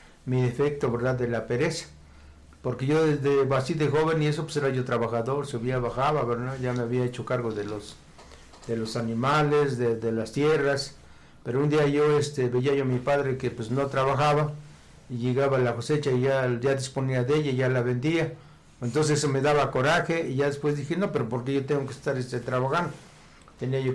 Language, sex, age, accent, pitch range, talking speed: Spanish, male, 60-79, Mexican, 125-150 Hz, 205 wpm